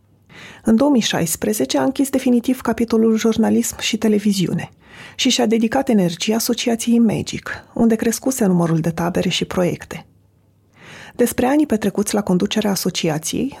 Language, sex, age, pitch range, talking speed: Romanian, female, 30-49, 180-235 Hz, 125 wpm